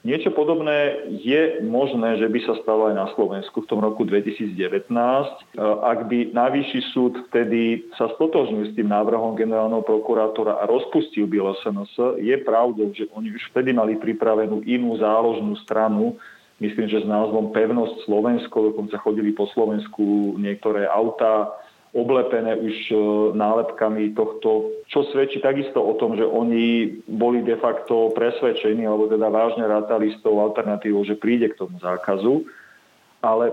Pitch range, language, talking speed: 110-125 Hz, Slovak, 145 wpm